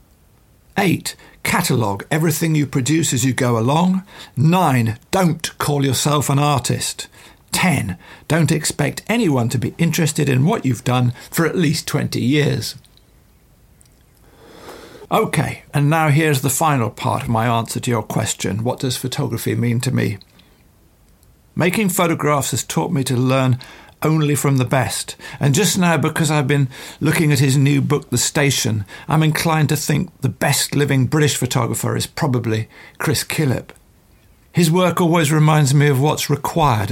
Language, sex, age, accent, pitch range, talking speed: English, male, 50-69, British, 125-160 Hz, 155 wpm